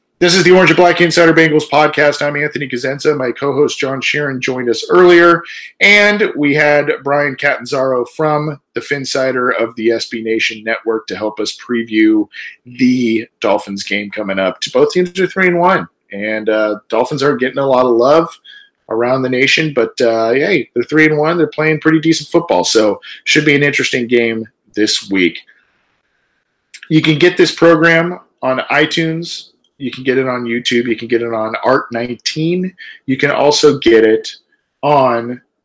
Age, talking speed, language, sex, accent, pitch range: 40-59, 175 wpm, English, male, American, 115-160 Hz